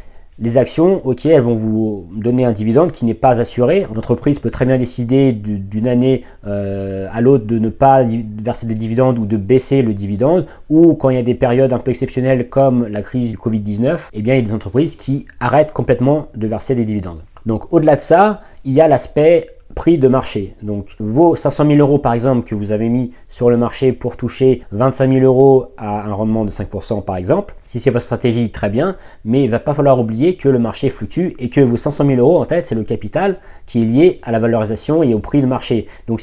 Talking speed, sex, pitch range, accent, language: 230 wpm, male, 110-135 Hz, French, French